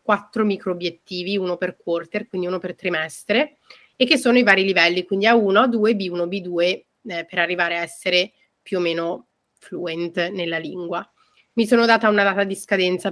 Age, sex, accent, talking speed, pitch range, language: 30-49, female, native, 180 wpm, 180-215 Hz, Italian